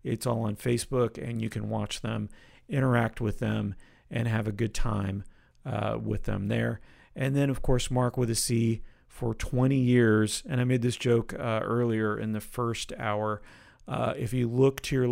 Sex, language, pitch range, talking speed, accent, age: male, English, 110-130 Hz, 195 wpm, American, 40-59